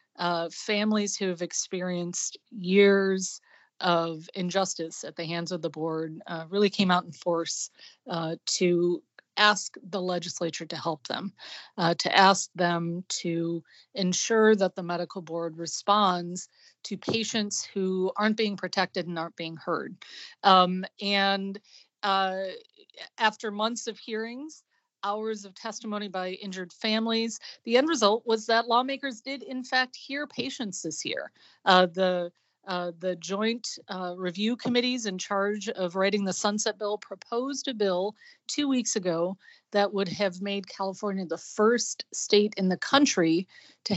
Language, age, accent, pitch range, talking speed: English, 40-59, American, 180-220 Hz, 145 wpm